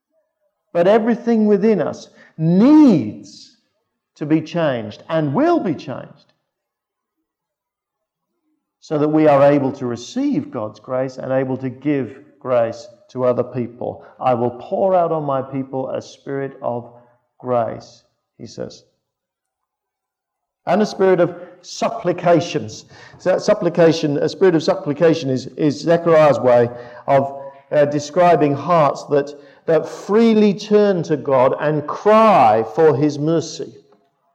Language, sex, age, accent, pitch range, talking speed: English, male, 50-69, British, 135-185 Hz, 130 wpm